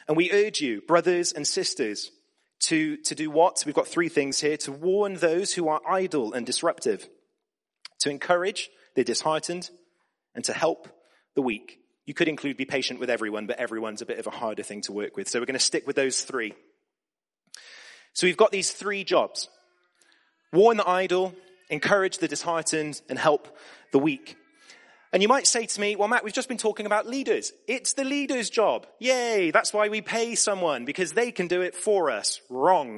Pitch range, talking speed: 155-260 Hz, 195 wpm